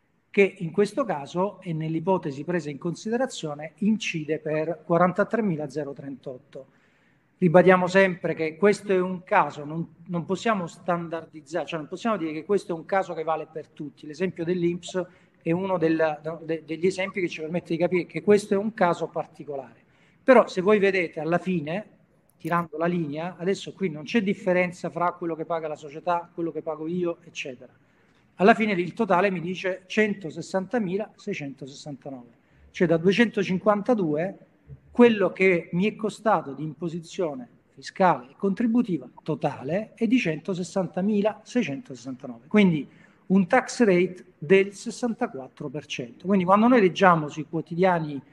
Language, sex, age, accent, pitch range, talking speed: Italian, male, 40-59, native, 155-195 Hz, 140 wpm